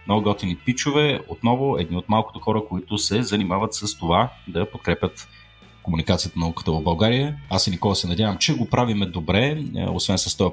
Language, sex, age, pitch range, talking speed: Bulgarian, male, 30-49, 95-125 Hz, 180 wpm